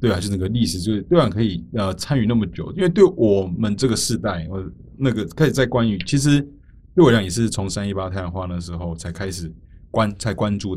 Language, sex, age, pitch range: Chinese, male, 20-39, 90-115 Hz